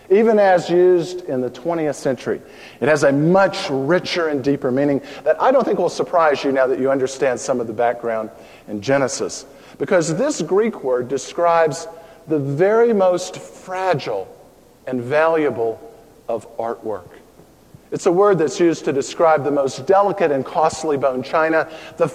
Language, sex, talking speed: English, male, 165 wpm